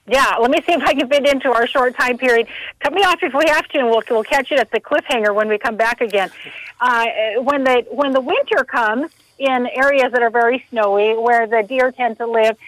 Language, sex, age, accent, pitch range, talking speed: English, female, 50-69, American, 220-275 Hz, 245 wpm